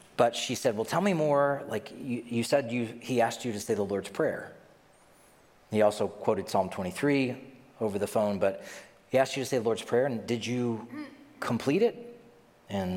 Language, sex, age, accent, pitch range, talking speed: English, male, 40-59, American, 115-155 Hz, 200 wpm